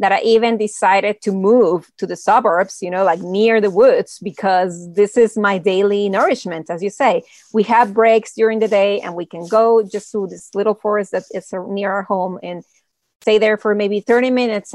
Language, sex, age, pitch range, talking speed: English, female, 30-49, 190-225 Hz, 210 wpm